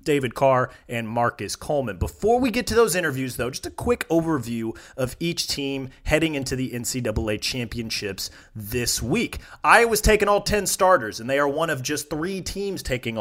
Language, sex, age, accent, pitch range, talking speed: English, male, 30-49, American, 125-165 Hz, 180 wpm